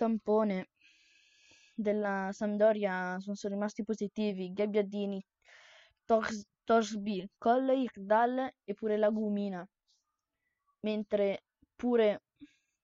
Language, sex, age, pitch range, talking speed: Italian, female, 20-39, 195-230 Hz, 80 wpm